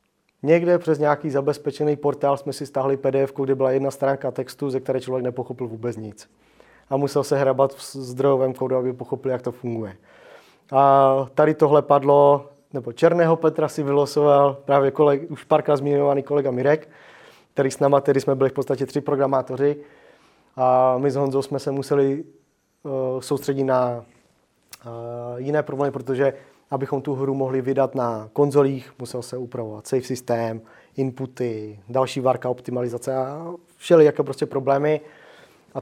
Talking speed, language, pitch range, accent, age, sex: 155 wpm, Czech, 130-145 Hz, native, 30-49, male